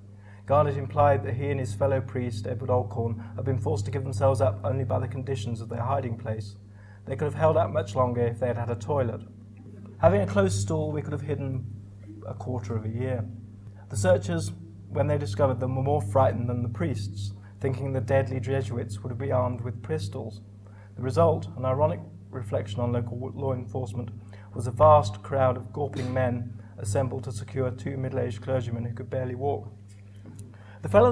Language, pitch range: English, 100-125 Hz